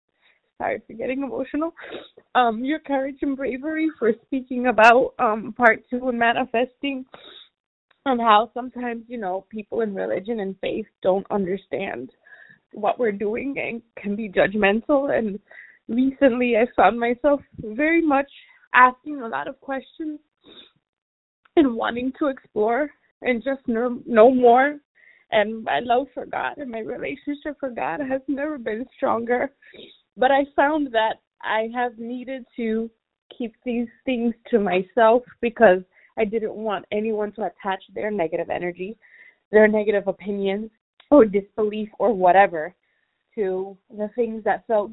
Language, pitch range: English, 210-270 Hz